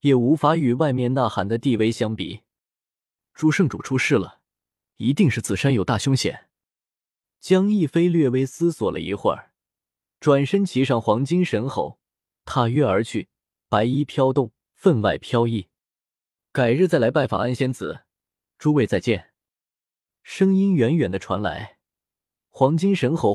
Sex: male